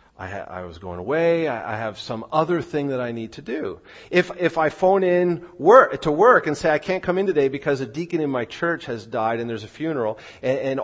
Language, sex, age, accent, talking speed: English, male, 40-59, American, 240 wpm